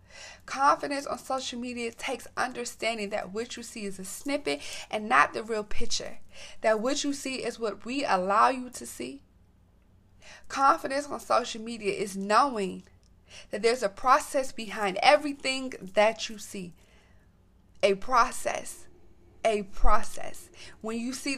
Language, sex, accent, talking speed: English, female, American, 145 wpm